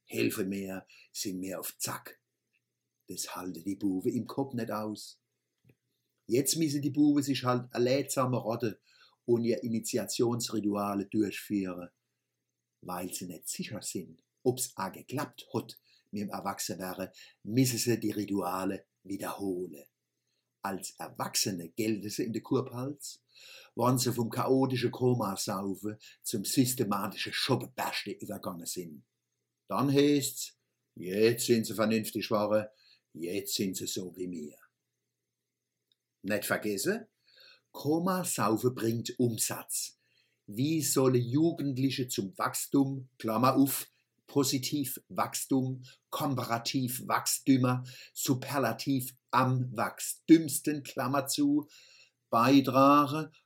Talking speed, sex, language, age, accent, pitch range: 110 wpm, male, German, 50-69, German, 105-135 Hz